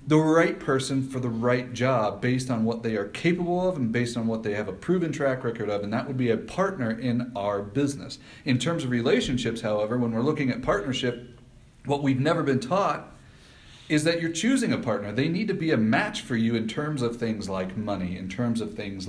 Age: 40-59